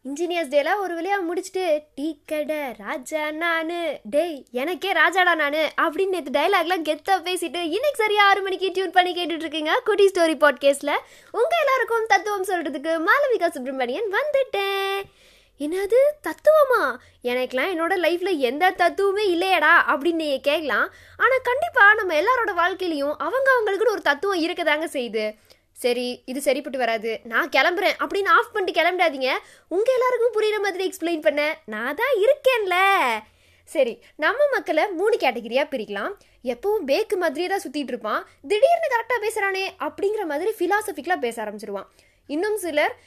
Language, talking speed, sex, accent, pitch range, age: Tamil, 70 wpm, female, native, 290-395 Hz, 20-39